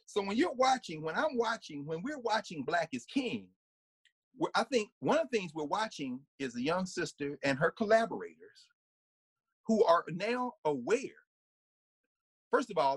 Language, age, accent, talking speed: English, 40-59, American, 160 wpm